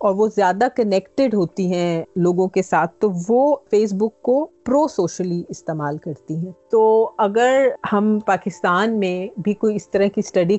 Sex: female